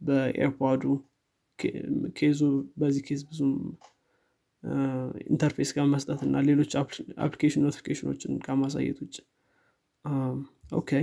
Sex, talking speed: male, 80 wpm